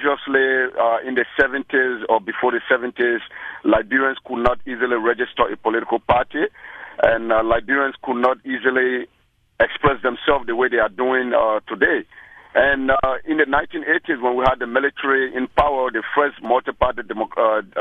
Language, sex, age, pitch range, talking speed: English, male, 50-69, 125-155 Hz, 165 wpm